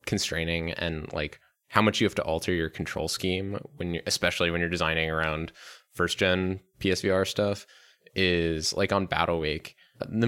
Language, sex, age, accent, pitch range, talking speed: English, male, 20-39, American, 85-100 Hz, 170 wpm